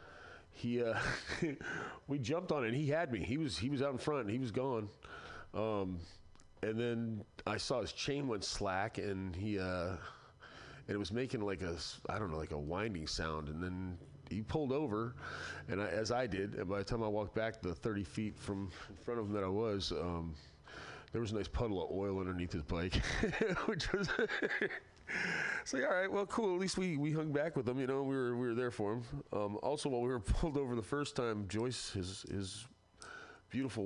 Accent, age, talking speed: American, 30-49, 220 wpm